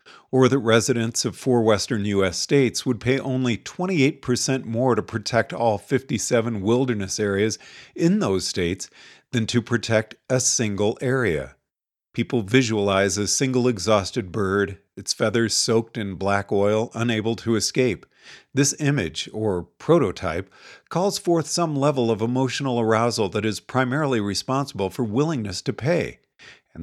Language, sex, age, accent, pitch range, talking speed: English, male, 50-69, American, 105-135 Hz, 140 wpm